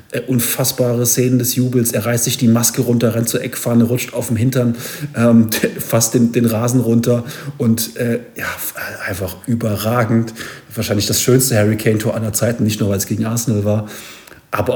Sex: male